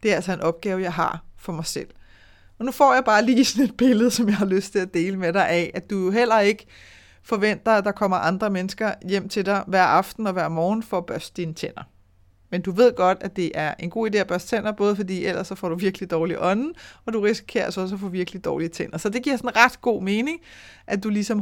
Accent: native